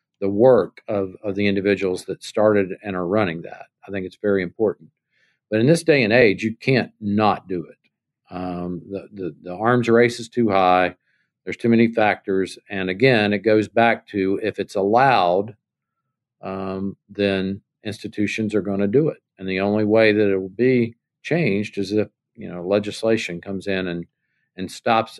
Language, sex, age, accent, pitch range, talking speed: English, male, 50-69, American, 95-120 Hz, 185 wpm